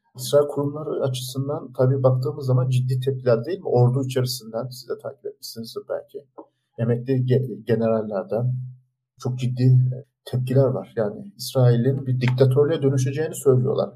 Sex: male